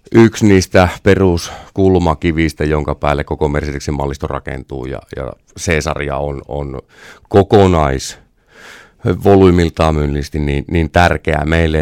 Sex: male